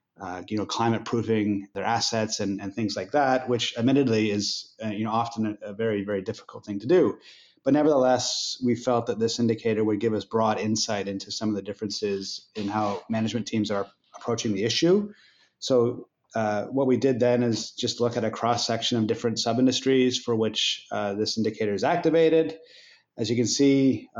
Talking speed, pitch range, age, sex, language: 190 wpm, 110-130 Hz, 30-49, male, English